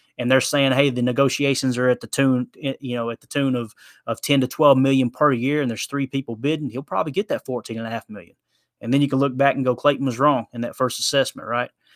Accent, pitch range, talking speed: American, 125-150 Hz, 265 wpm